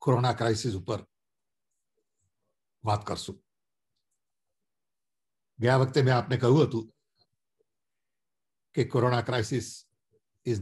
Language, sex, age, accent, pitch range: English, male, 60-79, Indian, 110-130 Hz